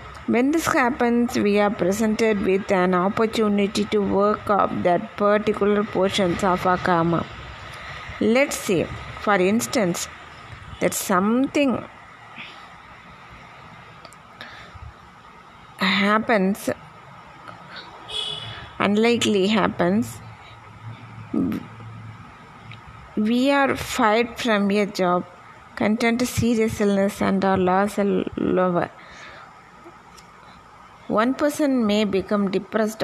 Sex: female